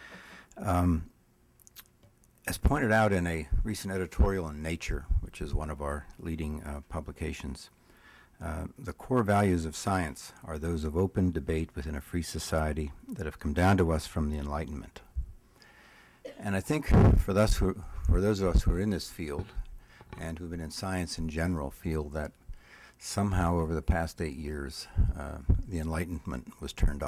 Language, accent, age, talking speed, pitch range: English, American, 60-79, 170 wpm, 75-95 Hz